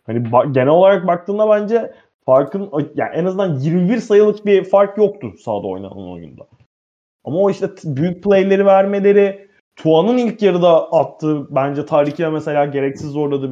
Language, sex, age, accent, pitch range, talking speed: Turkish, male, 20-39, native, 135-190 Hz, 150 wpm